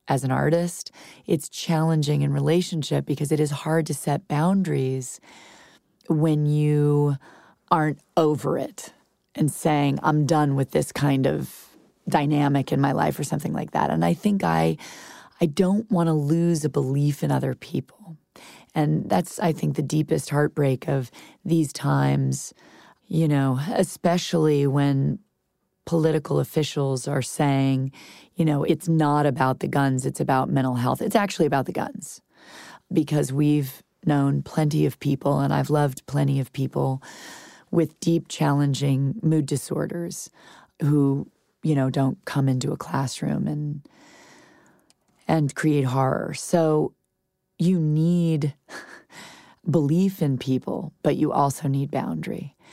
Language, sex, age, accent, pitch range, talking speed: English, female, 30-49, American, 140-160 Hz, 140 wpm